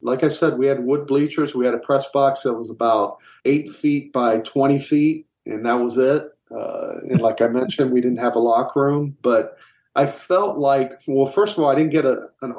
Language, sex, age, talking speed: English, male, 40-59, 225 wpm